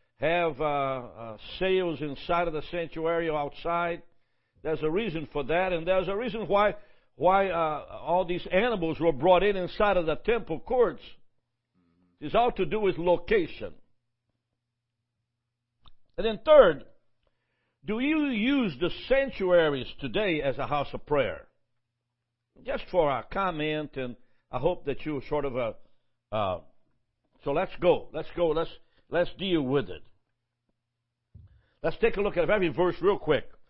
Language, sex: English, male